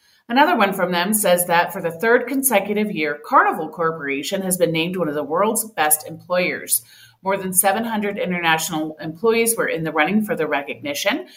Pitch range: 165-230 Hz